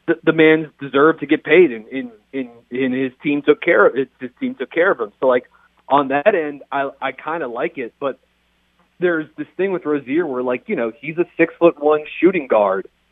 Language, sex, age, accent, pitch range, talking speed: English, male, 30-49, American, 125-150 Hz, 235 wpm